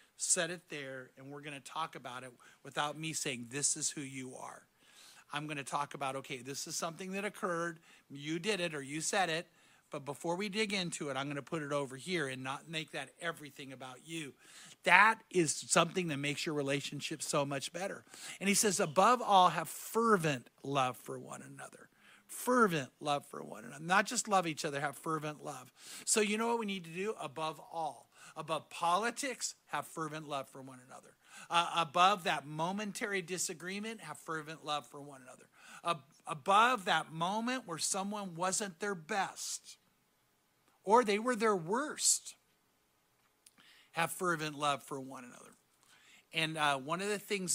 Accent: American